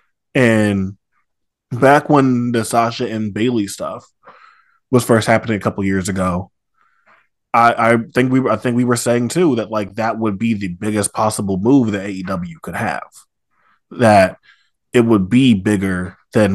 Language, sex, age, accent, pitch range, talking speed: English, male, 20-39, American, 105-125 Hz, 165 wpm